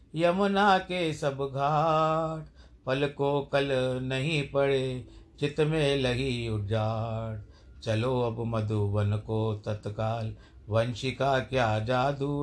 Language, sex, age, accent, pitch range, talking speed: Hindi, male, 50-69, native, 110-145 Hz, 105 wpm